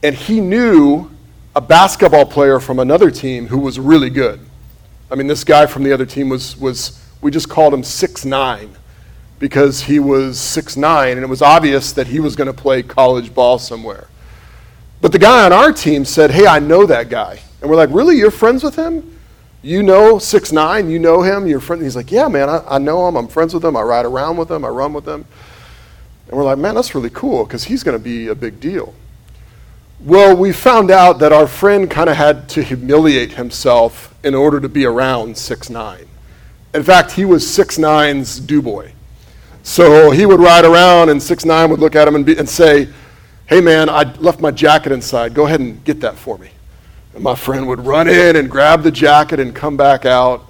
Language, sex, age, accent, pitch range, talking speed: English, male, 40-59, American, 130-160 Hz, 215 wpm